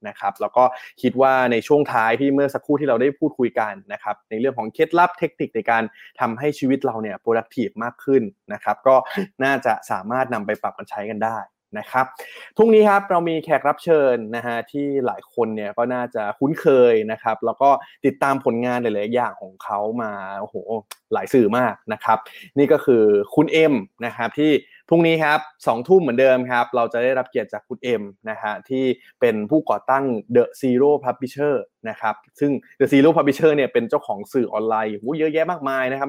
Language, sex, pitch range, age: Thai, male, 115-150 Hz, 20-39